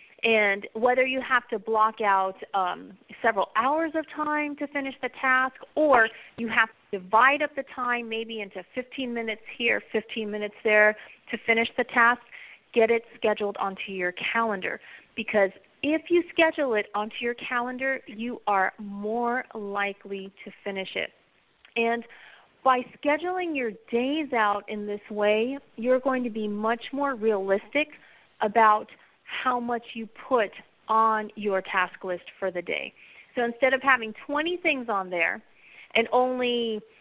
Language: English